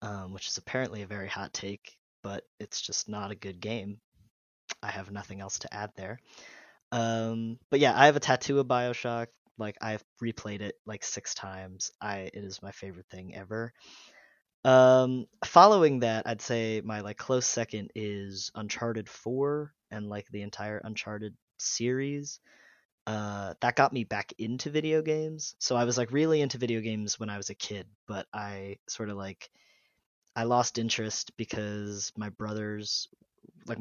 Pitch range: 100-120 Hz